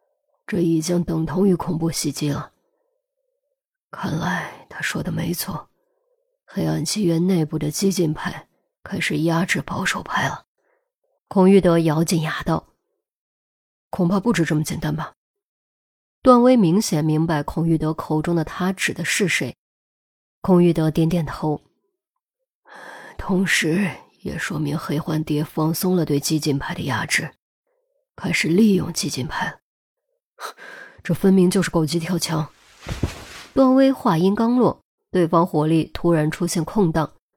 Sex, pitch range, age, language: female, 160-235 Hz, 20-39, Chinese